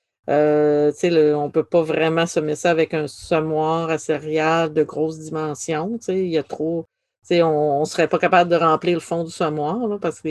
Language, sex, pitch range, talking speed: English, female, 155-185 Hz, 175 wpm